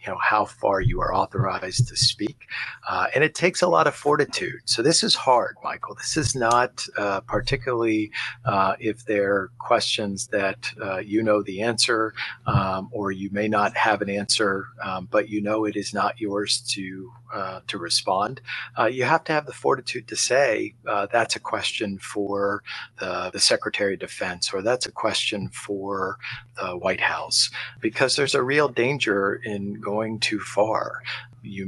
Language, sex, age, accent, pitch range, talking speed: English, male, 50-69, American, 100-120 Hz, 180 wpm